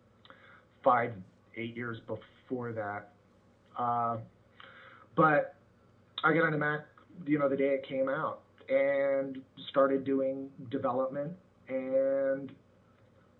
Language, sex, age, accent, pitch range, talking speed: English, male, 30-49, American, 115-160 Hz, 105 wpm